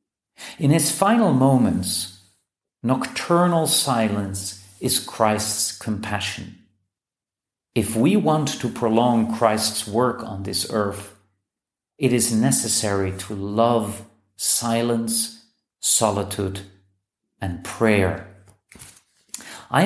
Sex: male